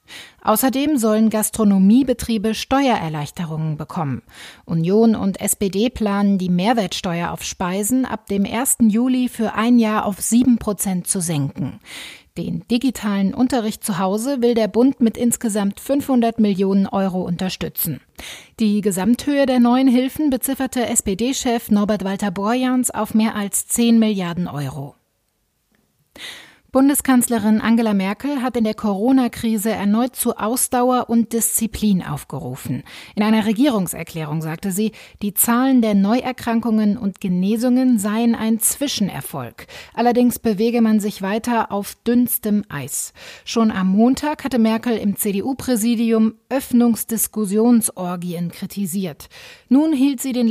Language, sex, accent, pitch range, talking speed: German, female, German, 200-240 Hz, 120 wpm